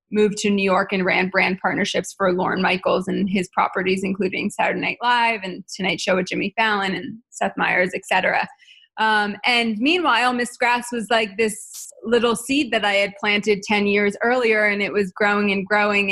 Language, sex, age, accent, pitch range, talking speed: English, female, 20-39, American, 195-225 Hz, 195 wpm